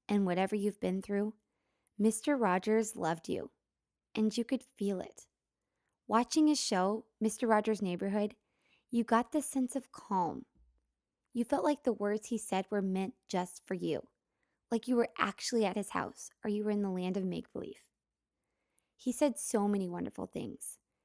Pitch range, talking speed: 190-230 Hz, 170 wpm